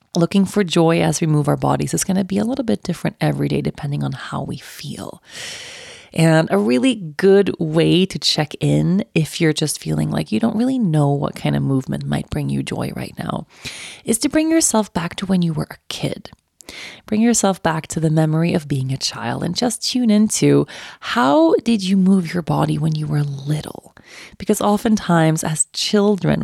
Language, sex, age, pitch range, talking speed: English, female, 30-49, 150-200 Hz, 200 wpm